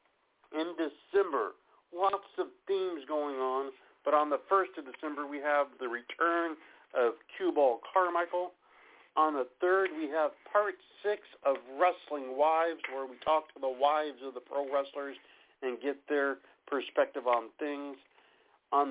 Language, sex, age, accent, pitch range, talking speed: English, male, 50-69, American, 135-180 Hz, 150 wpm